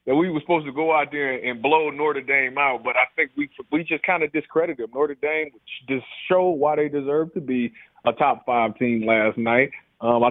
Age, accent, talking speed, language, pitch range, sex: 30-49, American, 235 wpm, English, 130-185 Hz, male